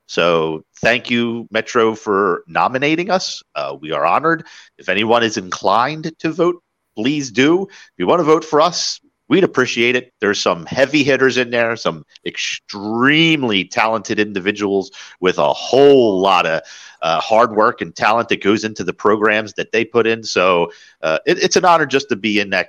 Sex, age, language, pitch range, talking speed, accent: male, 40-59, English, 105-155 Hz, 180 wpm, American